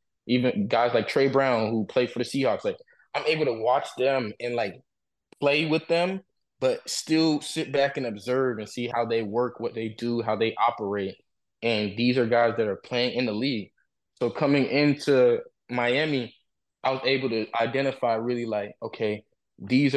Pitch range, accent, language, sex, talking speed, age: 115-140 Hz, American, English, male, 185 wpm, 20-39